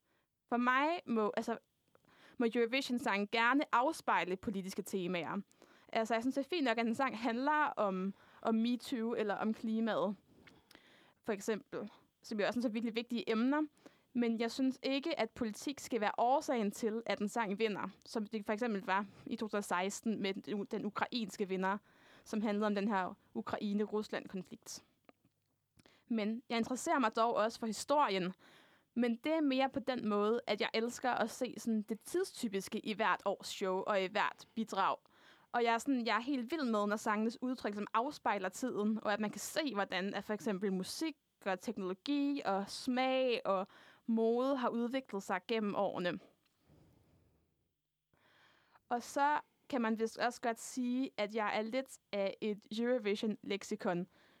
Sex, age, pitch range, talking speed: female, 20-39, 205-250 Hz, 165 wpm